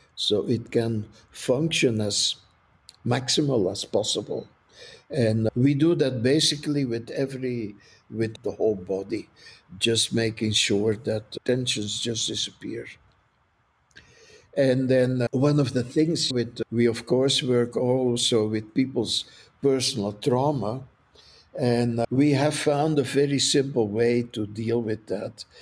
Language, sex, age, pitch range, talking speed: English, male, 60-79, 110-130 Hz, 125 wpm